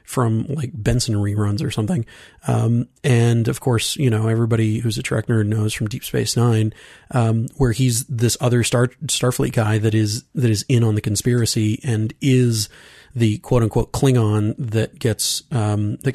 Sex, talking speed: male, 180 wpm